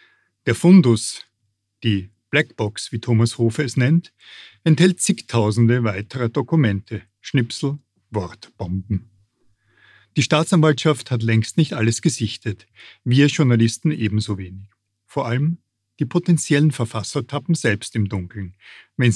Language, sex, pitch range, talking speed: German, male, 110-140 Hz, 115 wpm